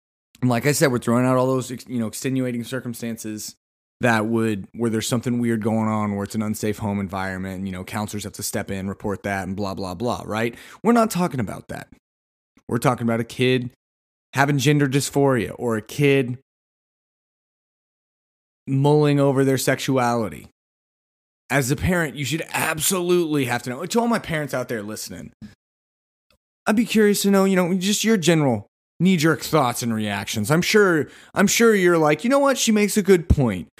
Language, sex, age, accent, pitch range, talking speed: English, male, 30-49, American, 110-155 Hz, 185 wpm